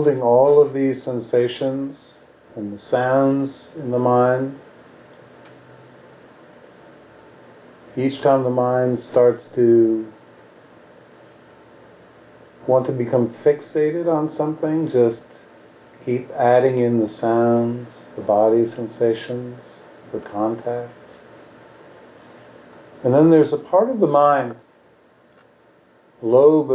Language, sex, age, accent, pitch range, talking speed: English, male, 50-69, American, 120-140 Hz, 95 wpm